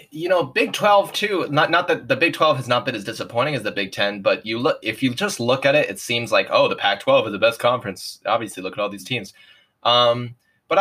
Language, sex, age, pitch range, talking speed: English, male, 20-39, 115-150 Hz, 260 wpm